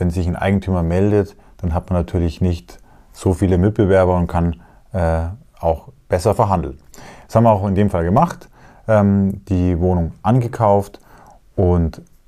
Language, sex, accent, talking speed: German, male, German, 155 wpm